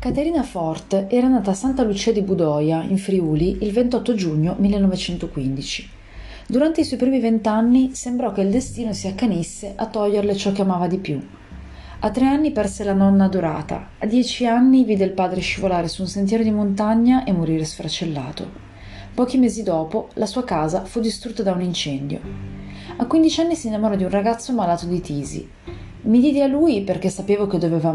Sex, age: female, 30-49